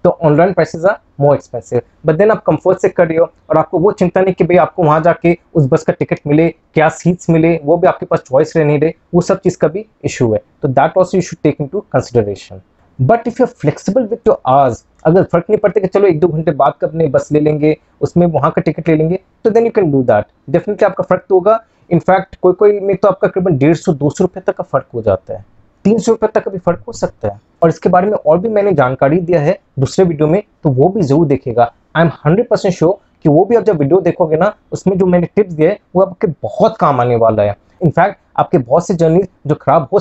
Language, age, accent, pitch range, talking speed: Hindi, 20-39, native, 145-190 Hz, 175 wpm